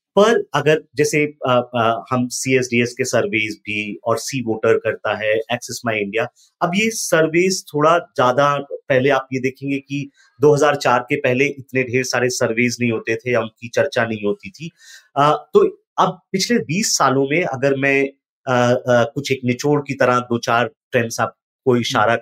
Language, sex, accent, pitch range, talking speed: Hindi, male, native, 125-185 Hz, 165 wpm